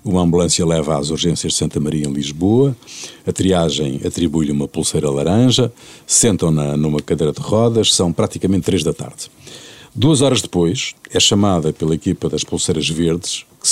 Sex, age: male, 50-69